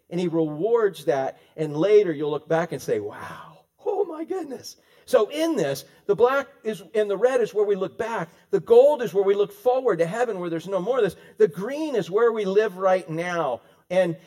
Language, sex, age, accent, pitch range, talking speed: English, male, 50-69, American, 165-275 Hz, 225 wpm